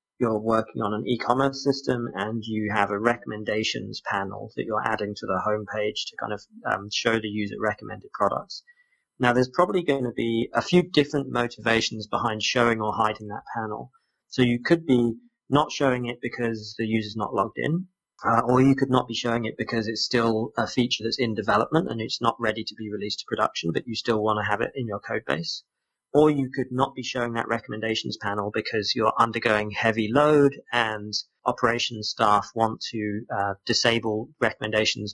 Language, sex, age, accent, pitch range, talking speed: English, male, 30-49, British, 110-125 Hz, 195 wpm